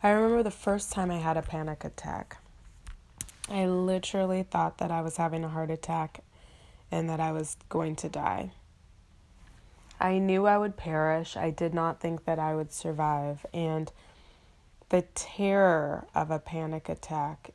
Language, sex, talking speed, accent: English, female, 160 wpm, American